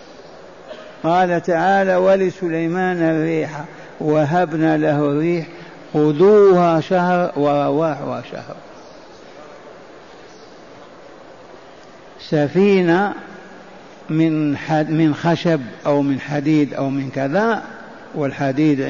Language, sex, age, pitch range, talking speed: Arabic, male, 60-79, 150-190 Hz, 65 wpm